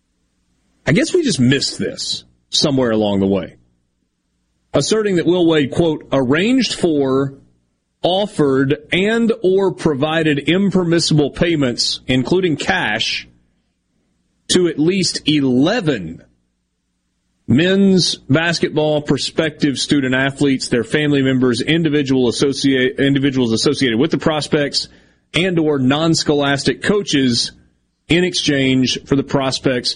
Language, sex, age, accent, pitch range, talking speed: English, male, 40-59, American, 105-155 Hz, 105 wpm